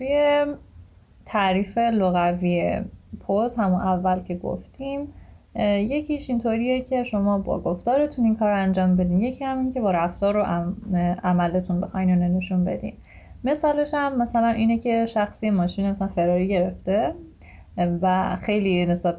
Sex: female